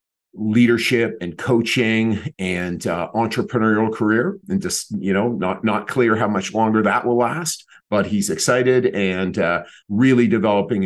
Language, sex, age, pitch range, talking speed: English, male, 50-69, 100-125 Hz, 150 wpm